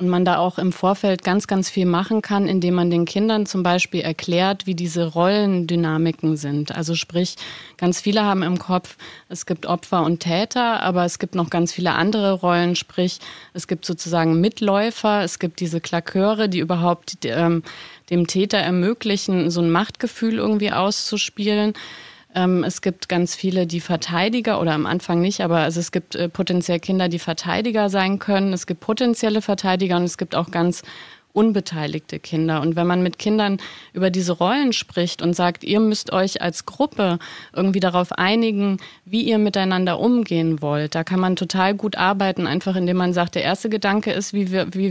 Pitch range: 175-200 Hz